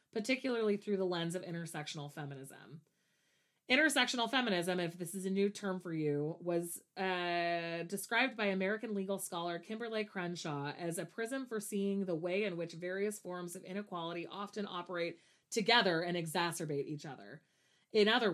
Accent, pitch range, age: American, 165-200 Hz, 30-49